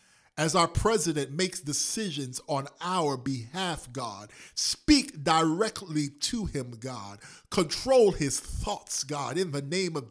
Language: English